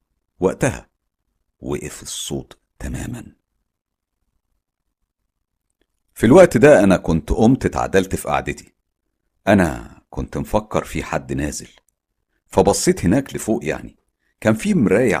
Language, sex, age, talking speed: Arabic, male, 50-69, 105 wpm